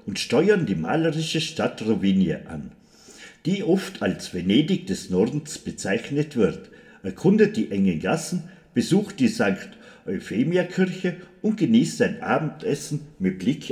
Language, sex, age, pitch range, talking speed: German, male, 50-69, 135-195 Hz, 125 wpm